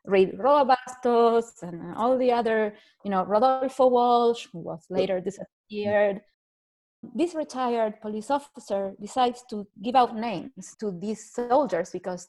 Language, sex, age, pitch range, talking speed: English, female, 30-49, 200-275 Hz, 130 wpm